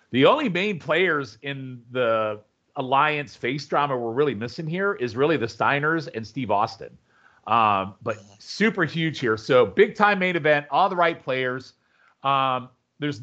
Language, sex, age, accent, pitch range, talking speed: English, male, 40-59, American, 125-165 Hz, 165 wpm